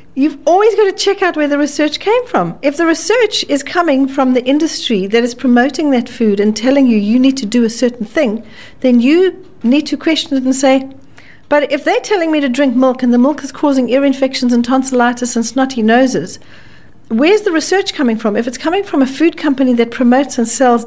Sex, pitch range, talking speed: female, 220-290 Hz, 225 wpm